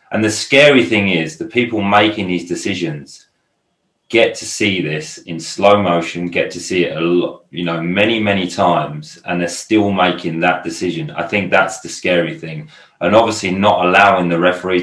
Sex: male